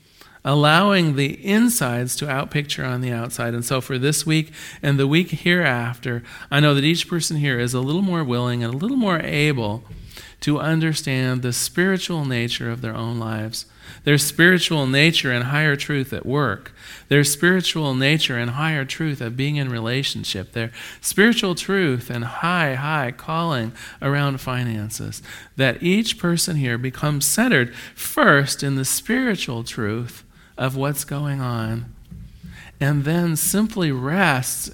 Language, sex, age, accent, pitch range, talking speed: English, male, 40-59, American, 120-155 Hz, 150 wpm